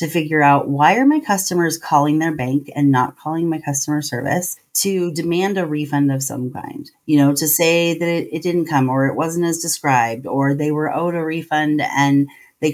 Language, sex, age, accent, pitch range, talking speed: English, female, 30-49, American, 140-180 Hz, 210 wpm